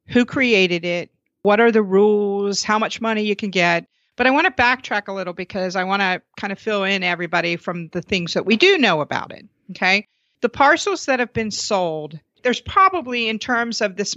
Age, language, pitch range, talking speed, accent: 50-69, English, 180-245 Hz, 215 wpm, American